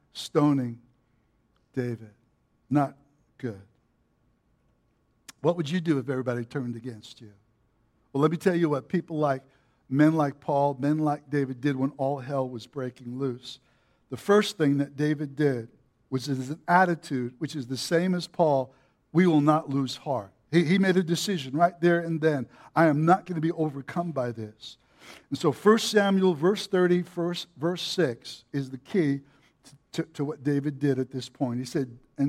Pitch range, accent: 130-175 Hz, American